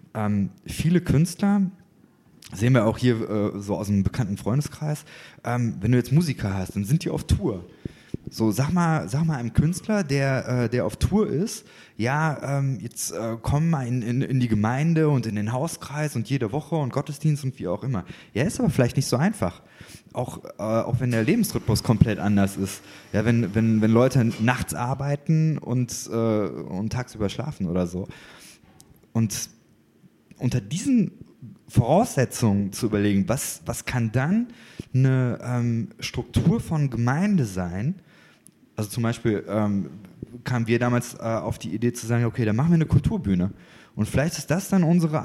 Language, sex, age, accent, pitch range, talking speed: German, male, 20-39, German, 110-150 Hz, 175 wpm